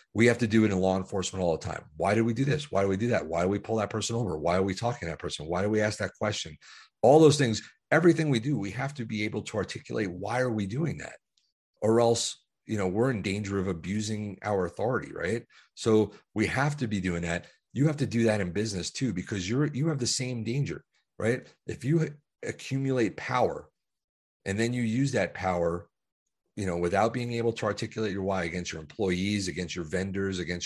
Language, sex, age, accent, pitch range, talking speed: English, male, 40-59, American, 95-120 Hz, 235 wpm